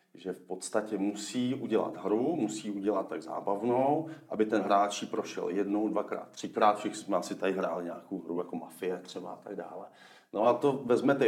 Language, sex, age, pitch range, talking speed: Czech, male, 40-59, 105-120 Hz, 180 wpm